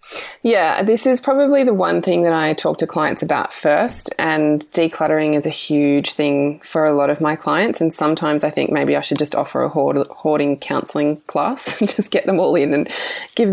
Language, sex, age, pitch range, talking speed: English, female, 20-39, 150-180 Hz, 210 wpm